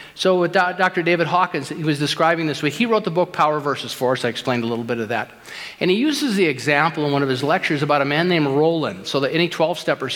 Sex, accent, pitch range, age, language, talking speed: male, American, 150-225 Hz, 50-69, English, 250 wpm